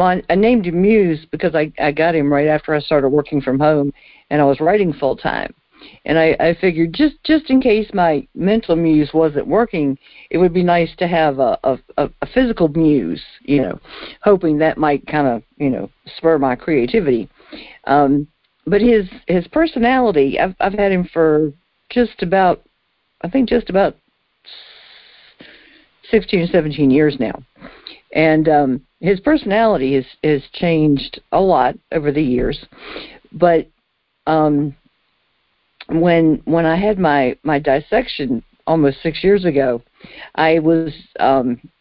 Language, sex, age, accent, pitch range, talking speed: English, female, 60-79, American, 145-185 Hz, 155 wpm